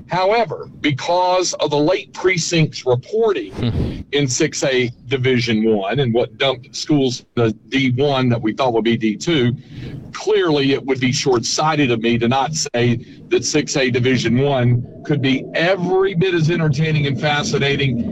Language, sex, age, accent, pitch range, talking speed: English, male, 50-69, American, 135-195 Hz, 150 wpm